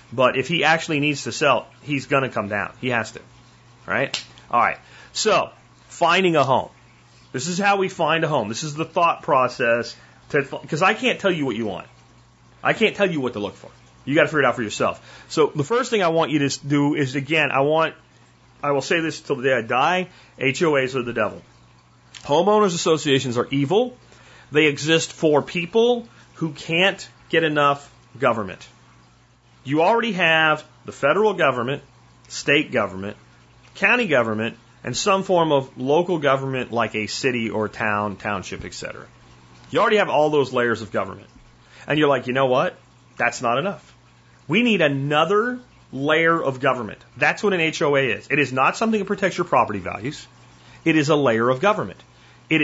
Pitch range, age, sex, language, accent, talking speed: 125-165 Hz, 30-49, male, English, American, 190 wpm